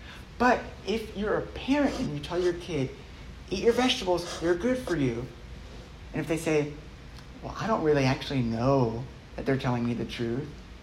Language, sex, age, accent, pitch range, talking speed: English, male, 60-79, American, 140-215 Hz, 185 wpm